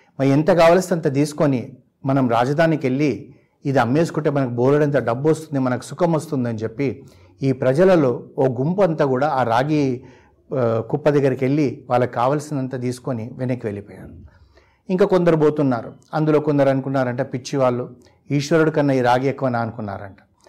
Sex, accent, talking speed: male, native, 145 wpm